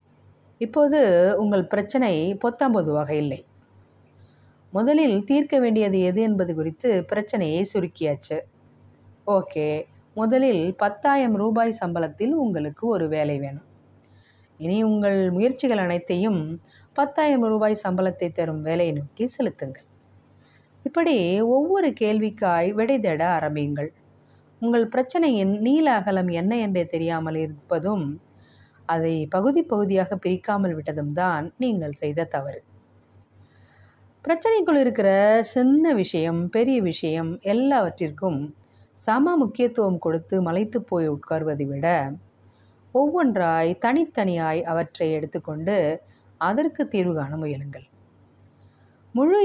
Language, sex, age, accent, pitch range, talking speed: Tamil, female, 30-49, native, 150-230 Hz, 95 wpm